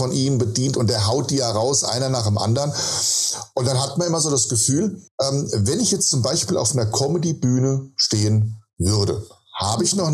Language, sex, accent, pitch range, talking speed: German, male, German, 115-145 Hz, 200 wpm